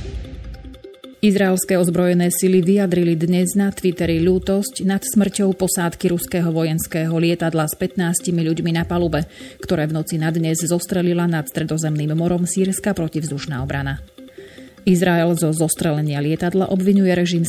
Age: 30-49